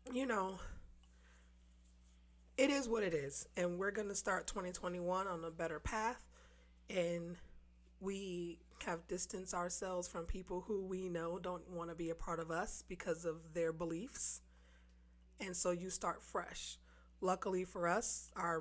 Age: 20-39